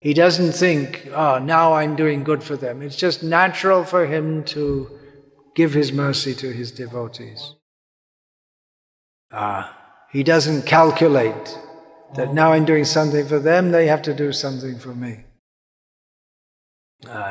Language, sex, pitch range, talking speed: English, male, 145-175 Hz, 140 wpm